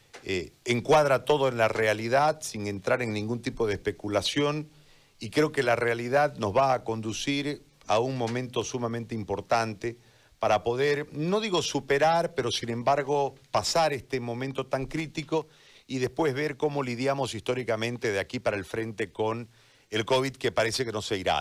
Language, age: Spanish, 50-69